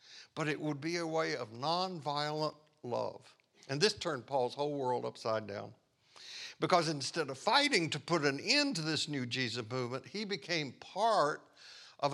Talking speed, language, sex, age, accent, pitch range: 170 wpm, English, male, 60-79, American, 135-175 Hz